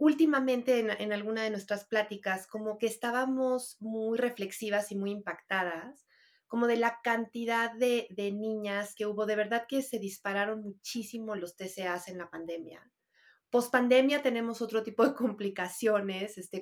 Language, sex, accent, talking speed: Spanish, female, Mexican, 150 wpm